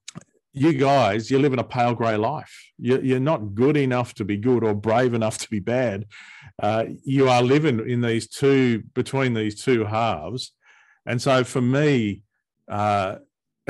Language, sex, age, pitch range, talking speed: English, male, 40-59, 105-130 Hz, 160 wpm